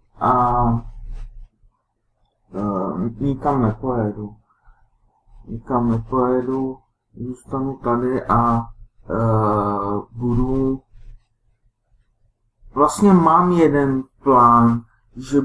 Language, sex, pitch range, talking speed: Czech, male, 115-140 Hz, 55 wpm